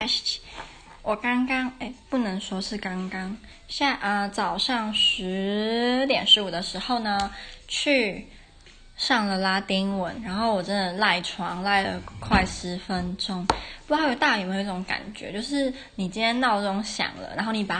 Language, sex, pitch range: Chinese, female, 190-245 Hz